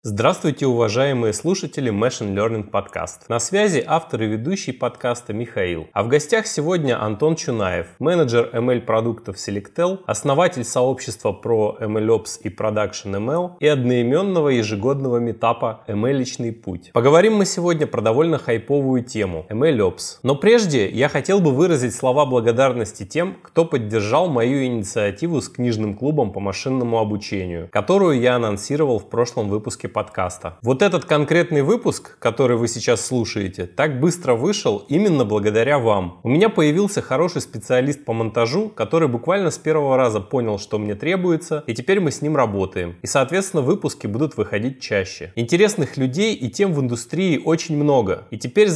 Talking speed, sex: 155 wpm, male